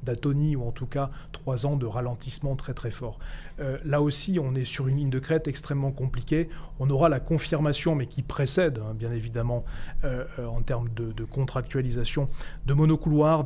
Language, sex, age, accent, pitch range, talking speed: French, male, 30-49, French, 125-150 Hz, 185 wpm